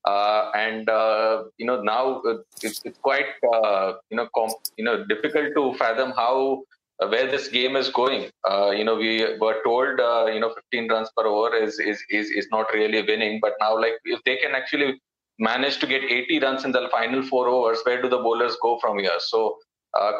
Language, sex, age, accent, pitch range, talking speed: English, male, 20-39, Indian, 120-145 Hz, 210 wpm